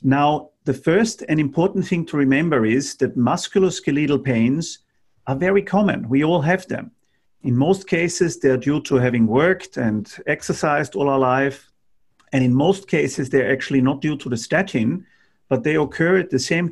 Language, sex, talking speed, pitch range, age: English, male, 175 wpm, 130-165 Hz, 50-69